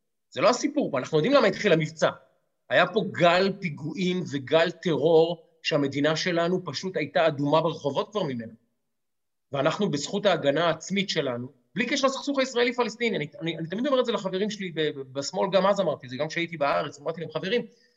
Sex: male